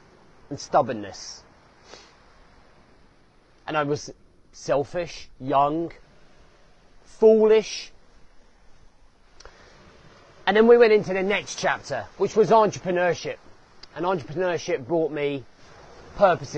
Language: English